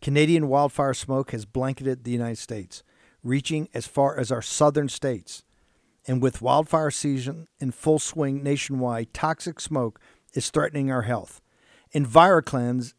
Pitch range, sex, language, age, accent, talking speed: 125-155 Hz, male, English, 50-69, American, 140 wpm